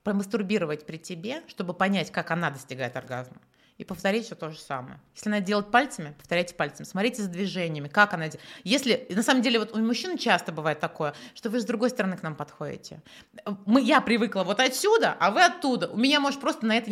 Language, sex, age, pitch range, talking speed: Russian, female, 30-49, 175-235 Hz, 215 wpm